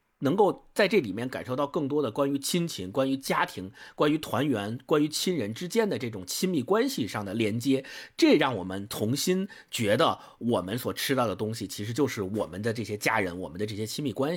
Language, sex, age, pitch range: Chinese, male, 50-69, 120-195 Hz